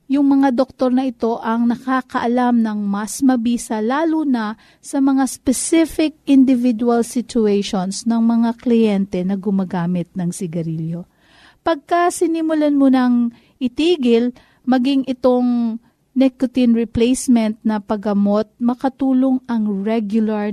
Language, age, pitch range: Filipino, 40-59, 225-275 Hz